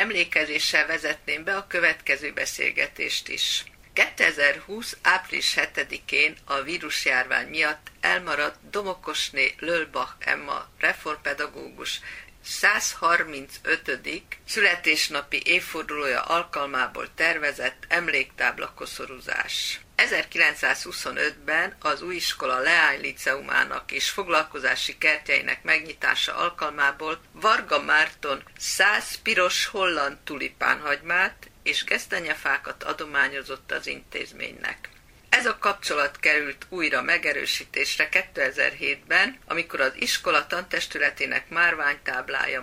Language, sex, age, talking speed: Hungarian, female, 50-69, 80 wpm